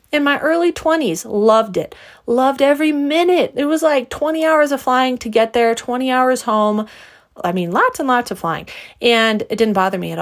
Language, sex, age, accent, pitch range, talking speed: English, female, 30-49, American, 180-235 Hz, 205 wpm